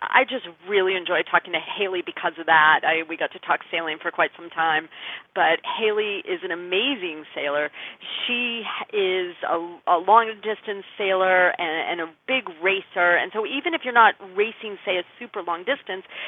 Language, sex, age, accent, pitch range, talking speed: English, female, 40-59, American, 170-220 Hz, 185 wpm